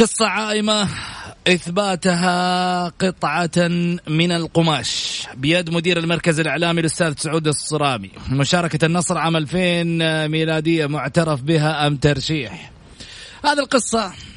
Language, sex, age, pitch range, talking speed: Arabic, male, 30-49, 110-165 Hz, 100 wpm